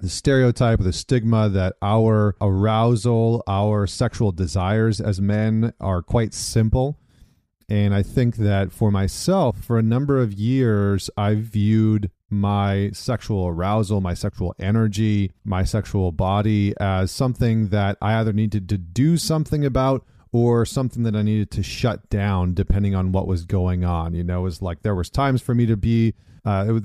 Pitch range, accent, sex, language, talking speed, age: 95-115 Hz, American, male, English, 170 wpm, 30-49